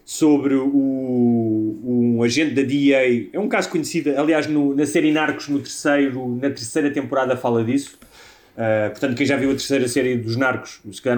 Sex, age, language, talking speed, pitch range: male, 30-49, Portuguese, 155 wpm, 120-150 Hz